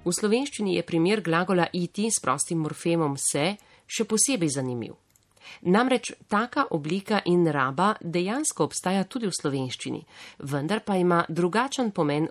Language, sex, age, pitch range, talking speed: Italian, female, 40-59, 145-195 Hz, 135 wpm